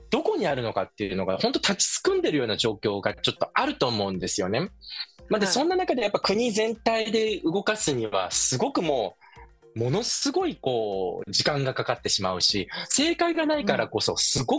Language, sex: Japanese, male